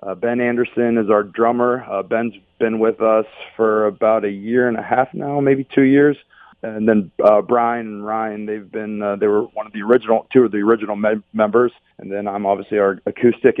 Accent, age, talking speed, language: American, 40-59, 210 wpm, English